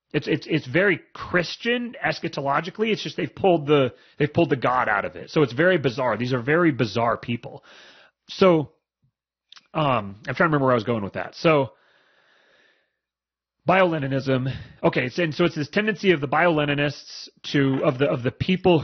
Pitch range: 130-165 Hz